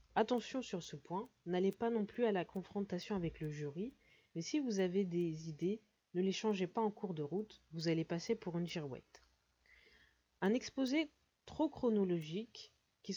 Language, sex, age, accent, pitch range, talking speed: French, female, 20-39, French, 165-215 Hz, 180 wpm